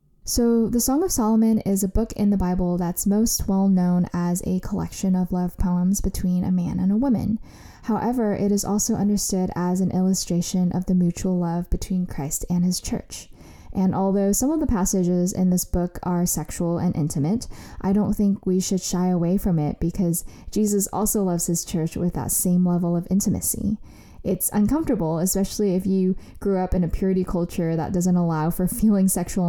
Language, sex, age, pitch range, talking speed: English, female, 10-29, 180-205 Hz, 195 wpm